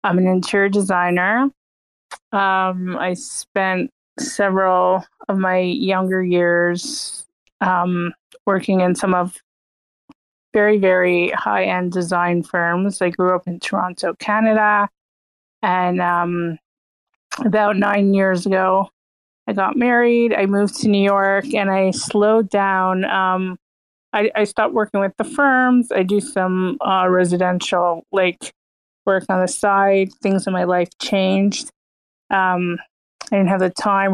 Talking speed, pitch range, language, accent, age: 130 wpm, 180-205 Hz, English, American, 20-39